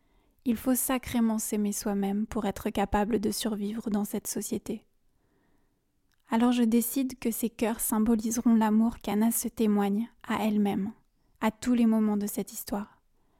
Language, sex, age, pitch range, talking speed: French, female, 20-39, 210-230 Hz, 150 wpm